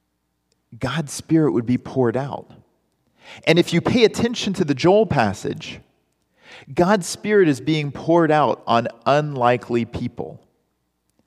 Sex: male